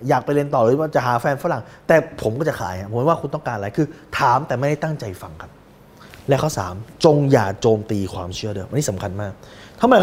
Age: 20-39